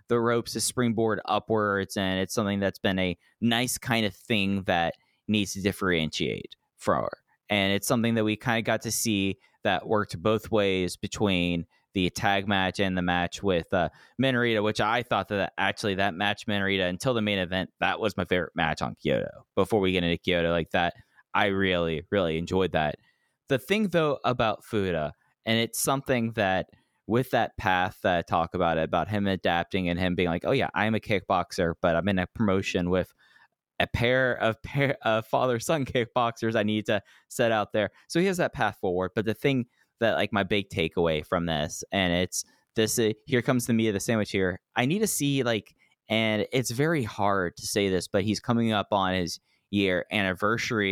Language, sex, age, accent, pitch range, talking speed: English, male, 20-39, American, 95-115 Hz, 200 wpm